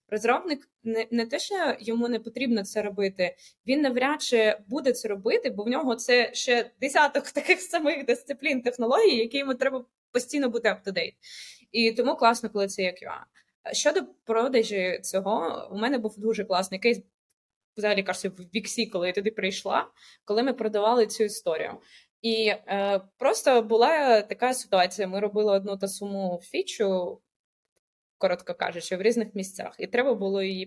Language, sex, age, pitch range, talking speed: Ukrainian, female, 20-39, 195-245 Hz, 160 wpm